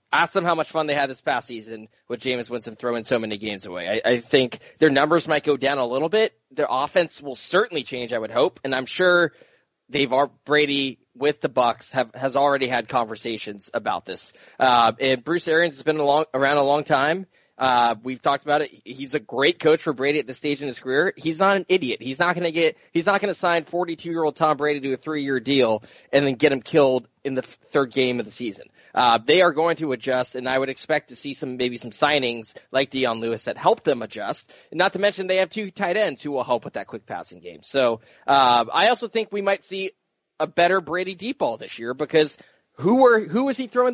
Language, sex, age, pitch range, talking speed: English, male, 20-39, 125-165 Hz, 245 wpm